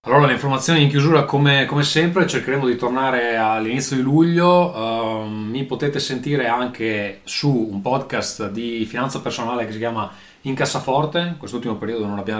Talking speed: 170 wpm